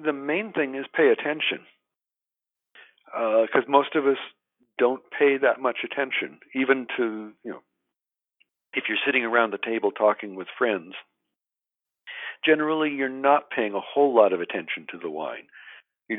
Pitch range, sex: 115-155 Hz, male